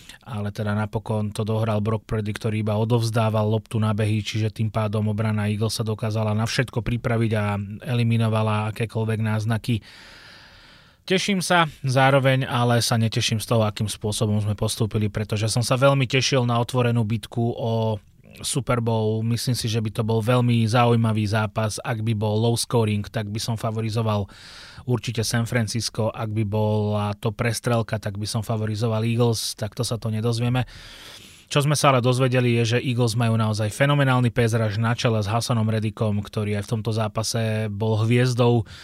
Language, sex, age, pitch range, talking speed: Slovak, male, 30-49, 110-120 Hz, 170 wpm